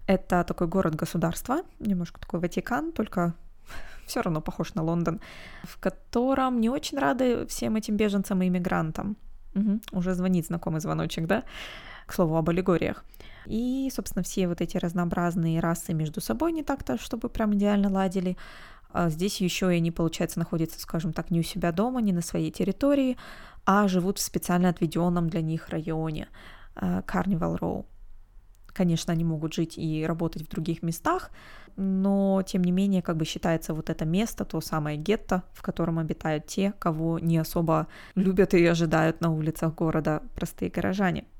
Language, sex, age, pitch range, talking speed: Russian, female, 20-39, 165-195 Hz, 160 wpm